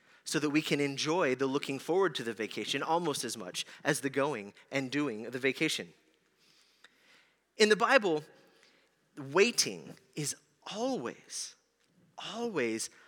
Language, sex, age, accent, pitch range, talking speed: English, male, 30-49, American, 150-200 Hz, 135 wpm